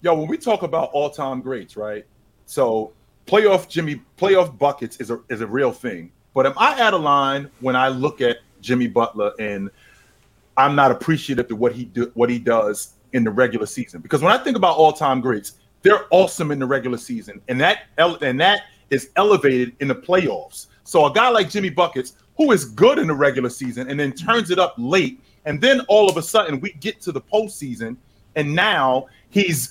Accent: American